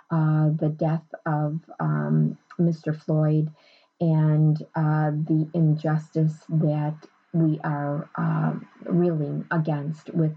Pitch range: 150-170 Hz